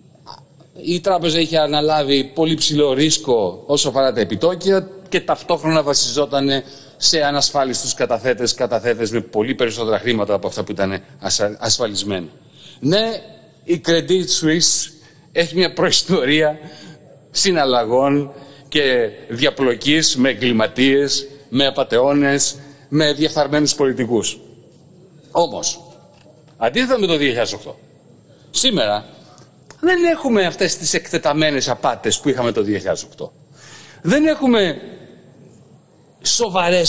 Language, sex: Greek, male